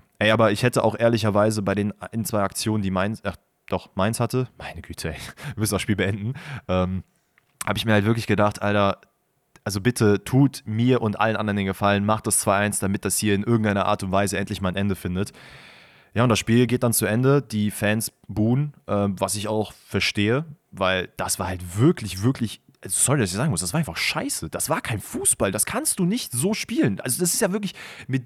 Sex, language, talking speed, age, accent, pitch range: male, German, 225 wpm, 20-39, German, 100-120 Hz